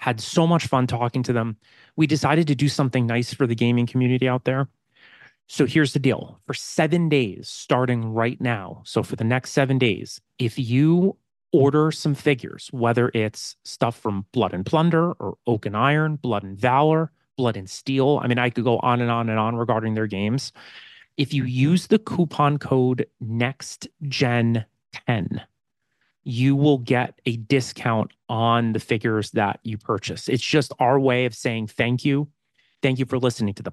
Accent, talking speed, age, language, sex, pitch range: American, 175 wpm, 30-49, English, male, 115-140 Hz